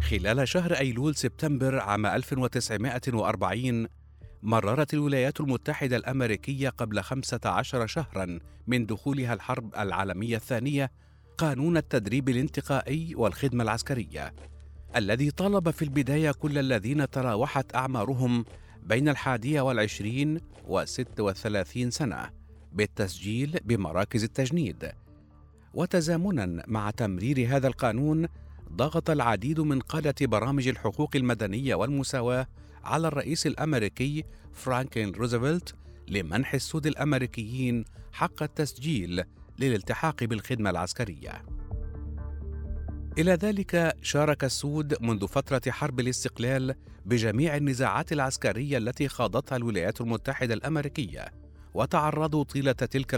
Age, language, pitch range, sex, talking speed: 50-69, Arabic, 105-145 Hz, male, 95 wpm